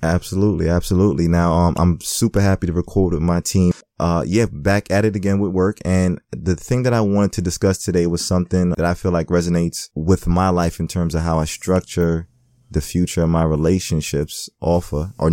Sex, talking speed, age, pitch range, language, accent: male, 210 wpm, 20-39, 85-100 Hz, English, American